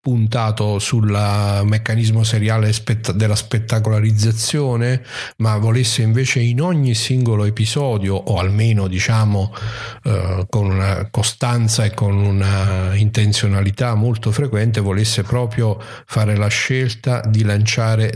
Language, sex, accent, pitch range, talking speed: Italian, male, native, 100-120 Hz, 110 wpm